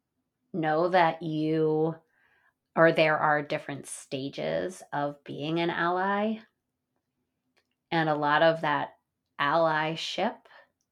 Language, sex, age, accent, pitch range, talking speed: English, female, 30-49, American, 145-180 Hz, 100 wpm